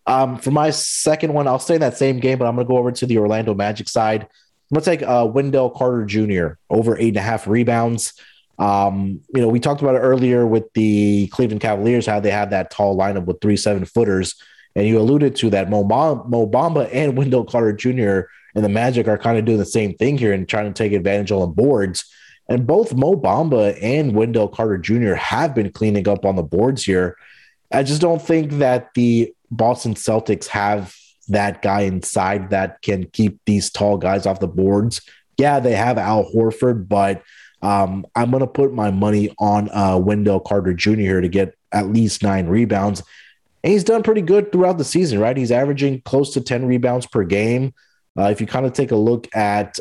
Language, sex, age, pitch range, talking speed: English, male, 30-49, 100-125 Hz, 210 wpm